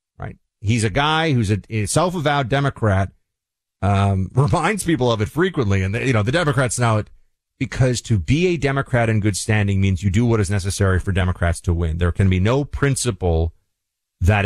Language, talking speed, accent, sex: English, 185 wpm, American, male